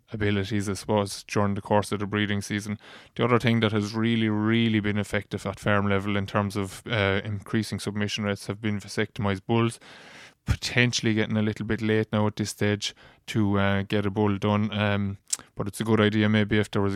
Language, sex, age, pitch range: English, male, 20-39, 100-110 Hz